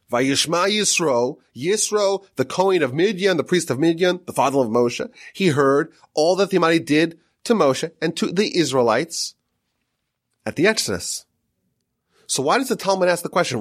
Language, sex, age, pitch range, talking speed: English, male, 30-49, 120-200 Hz, 170 wpm